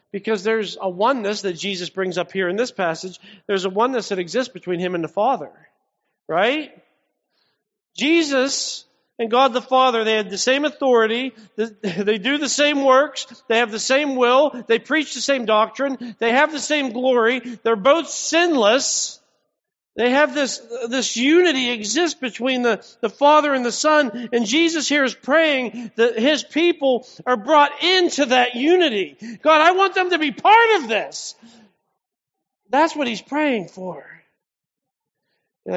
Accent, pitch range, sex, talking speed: American, 205-265 Hz, male, 165 wpm